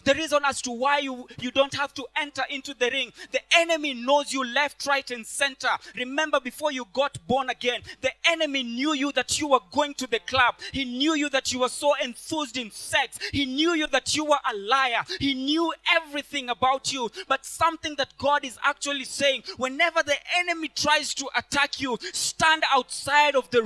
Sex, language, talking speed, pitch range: male, English, 205 wpm, 260-305 Hz